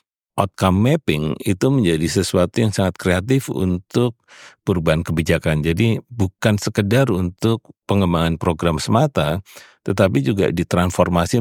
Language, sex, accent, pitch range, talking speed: Indonesian, male, native, 85-110 Hz, 110 wpm